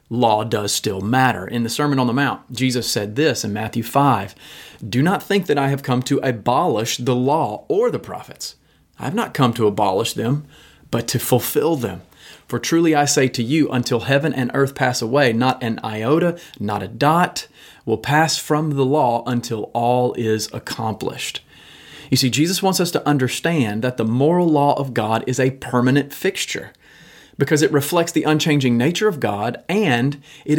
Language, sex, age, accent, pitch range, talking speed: English, male, 30-49, American, 120-150 Hz, 185 wpm